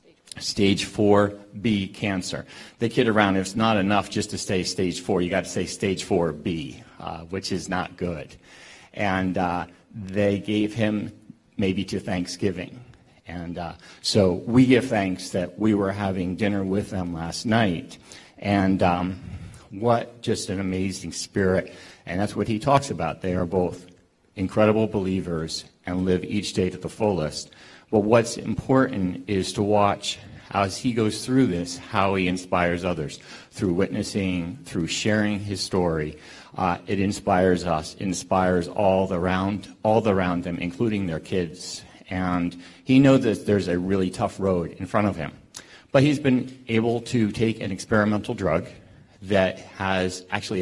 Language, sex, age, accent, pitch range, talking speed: English, male, 50-69, American, 90-105 Hz, 155 wpm